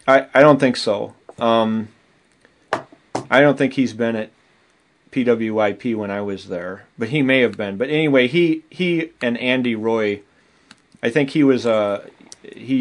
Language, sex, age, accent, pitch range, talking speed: English, male, 30-49, American, 105-125 Hz, 180 wpm